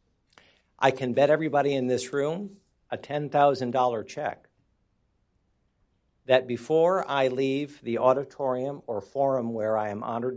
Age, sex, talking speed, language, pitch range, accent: 50-69, male, 125 wpm, English, 105-135 Hz, American